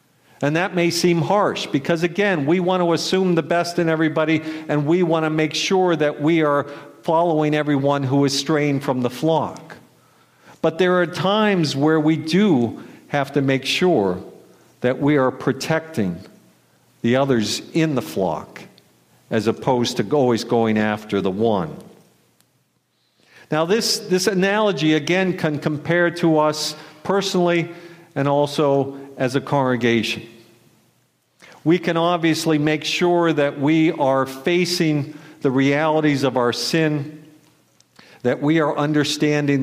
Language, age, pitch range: English, 50-69, 130-160 Hz